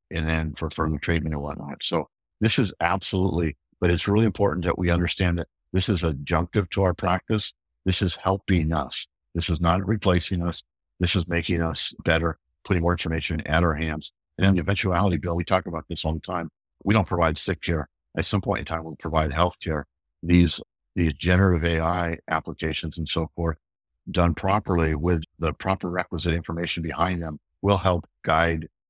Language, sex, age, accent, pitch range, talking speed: English, male, 50-69, American, 80-95 Hz, 190 wpm